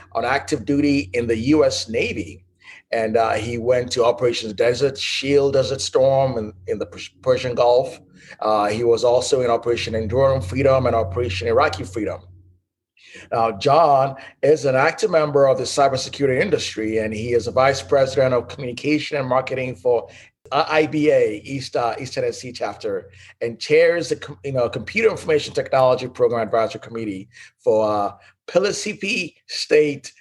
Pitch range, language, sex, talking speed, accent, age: 110-145 Hz, English, male, 145 wpm, American, 30-49